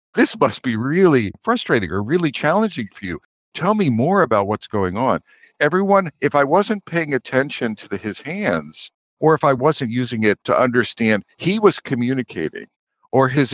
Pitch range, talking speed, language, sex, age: 100-145 Hz, 175 wpm, English, male, 60-79